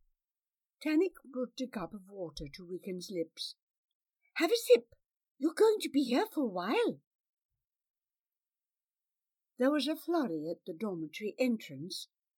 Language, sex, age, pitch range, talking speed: English, female, 60-79, 205-340 Hz, 135 wpm